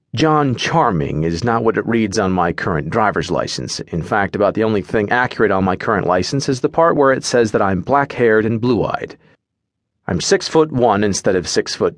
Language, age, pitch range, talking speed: English, 40-59, 100-135 Hz, 210 wpm